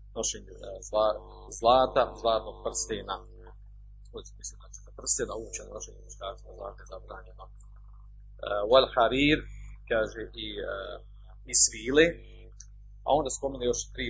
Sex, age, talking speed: male, 40-59, 100 wpm